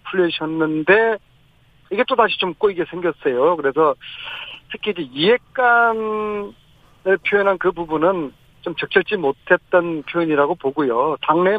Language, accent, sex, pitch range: Korean, native, male, 150-205 Hz